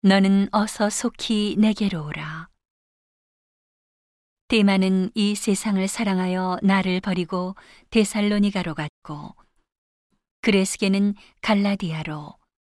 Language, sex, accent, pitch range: Korean, female, native, 180-205 Hz